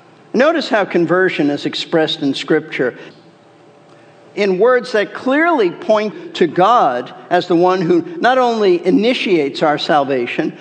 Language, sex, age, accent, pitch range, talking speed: English, male, 50-69, American, 175-225 Hz, 130 wpm